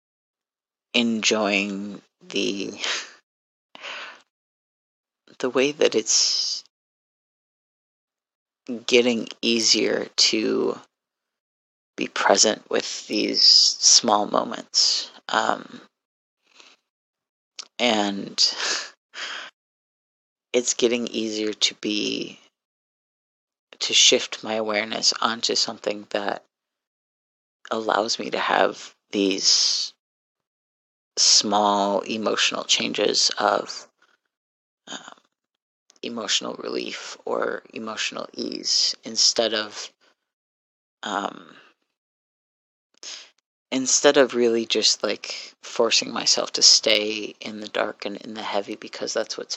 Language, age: English, 30-49